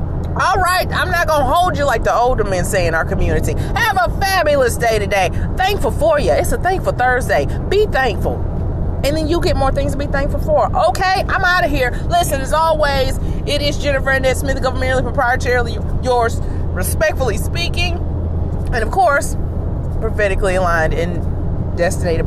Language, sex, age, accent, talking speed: English, female, 30-49, American, 170 wpm